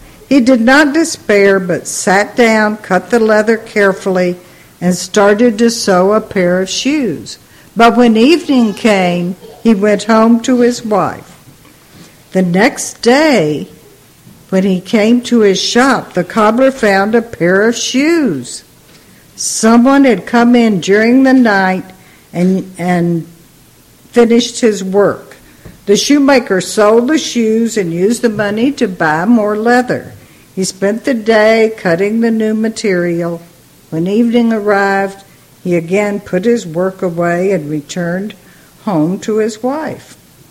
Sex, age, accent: female, 60-79, American